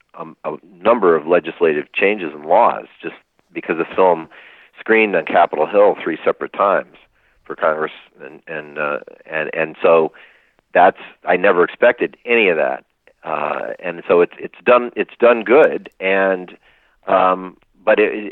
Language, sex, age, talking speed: English, male, 40-59, 150 wpm